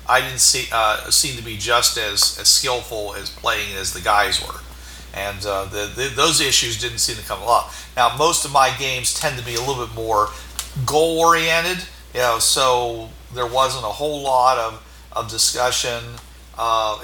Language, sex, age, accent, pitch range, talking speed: English, male, 50-69, American, 110-150 Hz, 190 wpm